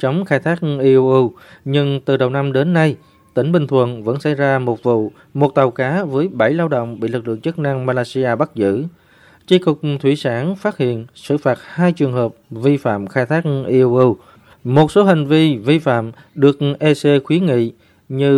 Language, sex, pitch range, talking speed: Vietnamese, male, 120-150 Hz, 195 wpm